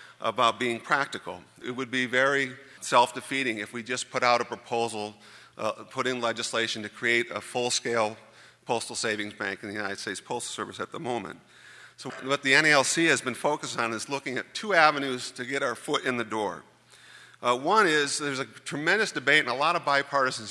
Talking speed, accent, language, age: 195 wpm, American, English, 40-59